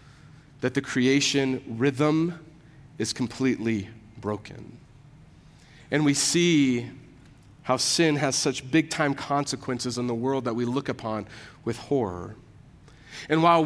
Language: English